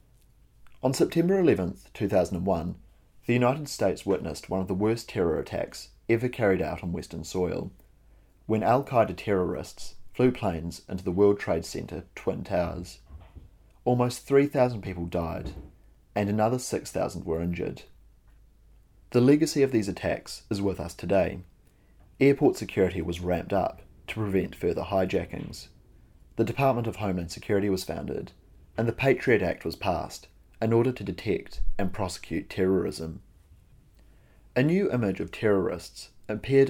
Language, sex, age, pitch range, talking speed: English, male, 30-49, 90-115 Hz, 140 wpm